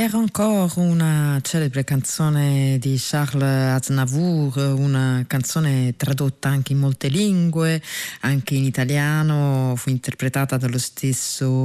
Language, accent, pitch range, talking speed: Italian, native, 140-170 Hz, 115 wpm